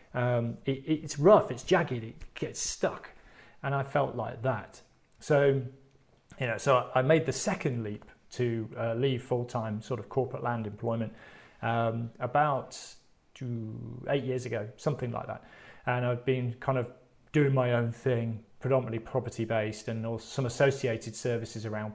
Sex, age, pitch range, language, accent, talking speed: male, 30-49, 115-135 Hz, English, British, 160 wpm